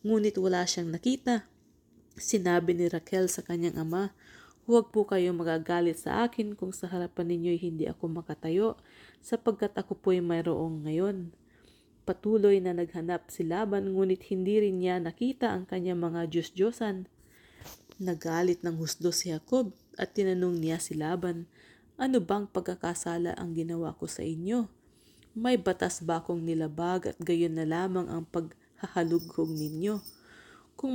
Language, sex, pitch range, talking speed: English, female, 170-200 Hz, 140 wpm